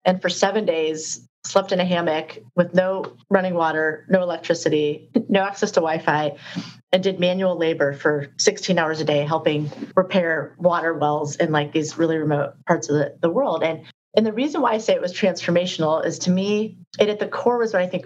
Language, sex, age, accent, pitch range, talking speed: English, female, 30-49, American, 155-195 Hz, 205 wpm